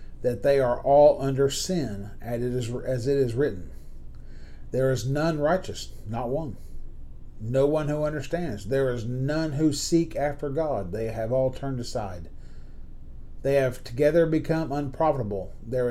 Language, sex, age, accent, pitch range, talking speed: English, male, 40-59, American, 110-145 Hz, 145 wpm